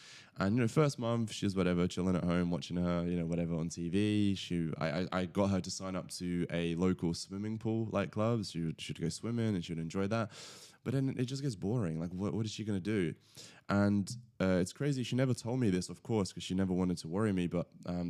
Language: English